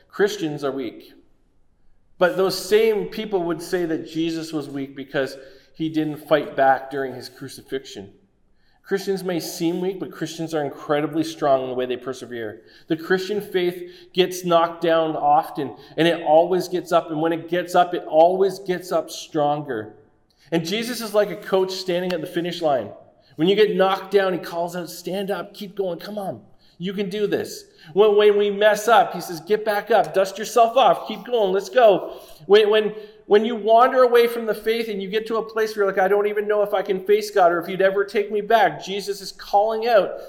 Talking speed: 210 wpm